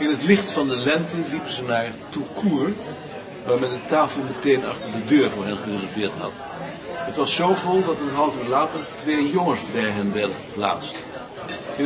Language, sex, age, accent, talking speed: Dutch, male, 60-79, Dutch, 190 wpm